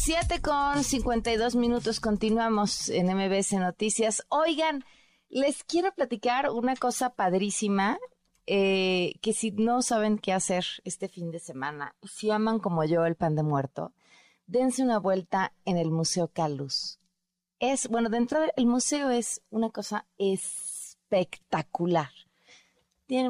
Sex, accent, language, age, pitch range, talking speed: female, Mexican, Spanish, 30-49, 170-230 Hz, 130 wpm